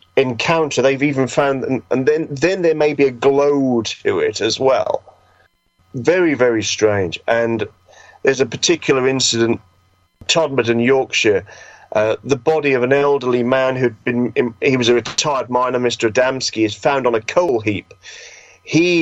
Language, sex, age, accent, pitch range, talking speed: English, male, 40-59, British, 120-160 Hz, 165 wpm